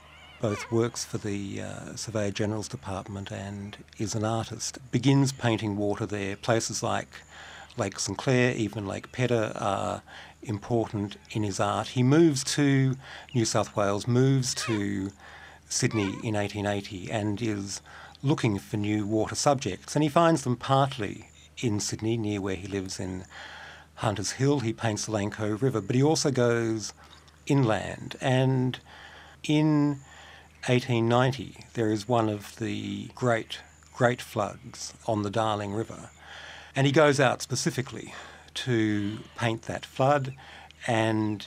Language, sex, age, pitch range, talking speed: English, male, 50-69, 100-120 Hz, 140 wpm